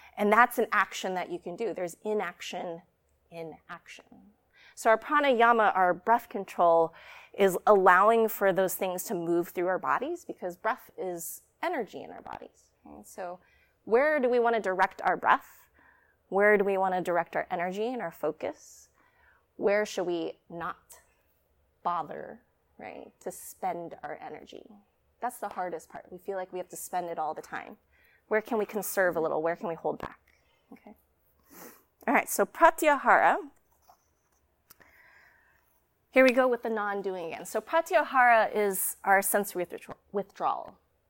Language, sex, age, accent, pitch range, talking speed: English, female, 30-49, American, 175-235 Hz, 160 wpm